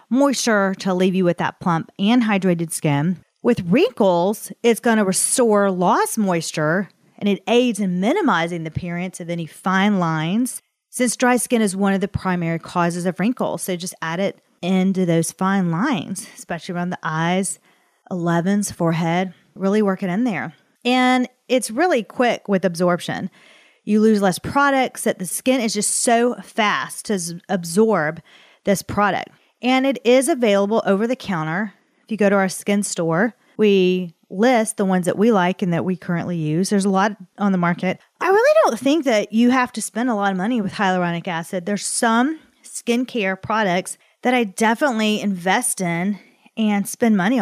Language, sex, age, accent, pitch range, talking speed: English, female, 40-59, American, 180-230 Hz, 180 wpm